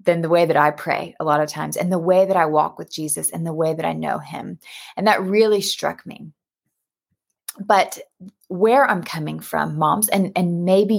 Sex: female